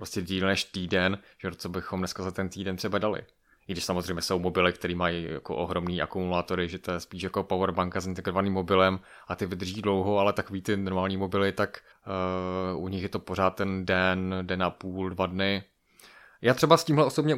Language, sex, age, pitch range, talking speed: Czech, male, 20-39, 90-105 Hz, 205 wpm